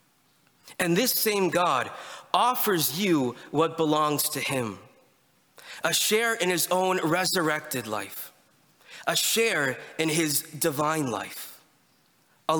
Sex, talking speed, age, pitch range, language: male, 115 wpm, 20-39, 150-200 Hz, English